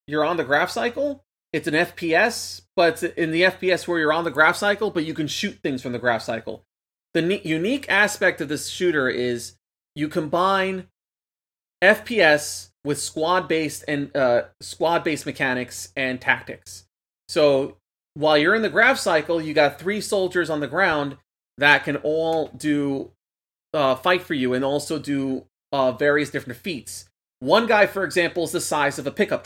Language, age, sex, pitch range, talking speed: English, 30-49, male, 135-170 Hz, 175 wpm